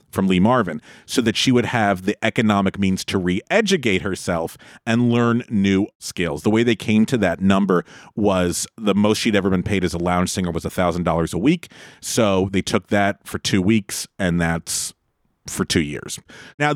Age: 40-59